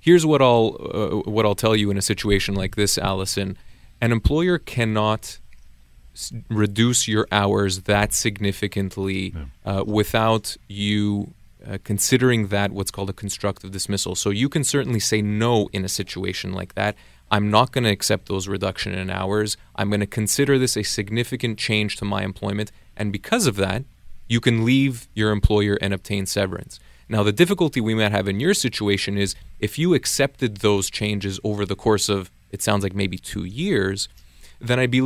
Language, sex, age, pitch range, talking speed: English, male, 30-49, 100-115 Hz, 180 wpm